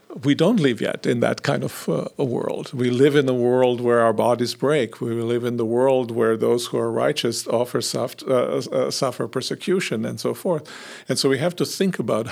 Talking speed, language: 220 wpm, English